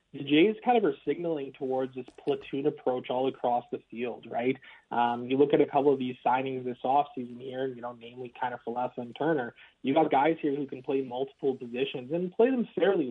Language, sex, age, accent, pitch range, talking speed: English, male, 30-49, American, 125-150 Hz, 220 wpm